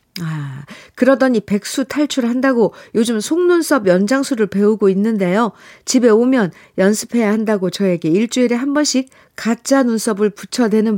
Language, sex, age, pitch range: Korean, female, 50-69, 180-245 Hz